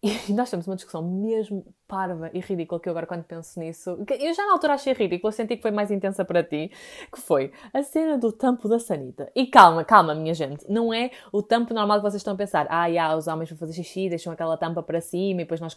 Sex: female